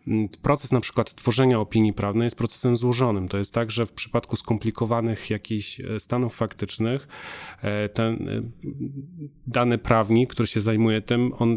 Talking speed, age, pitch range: 140 wpm, 30-49, 110-125 Hz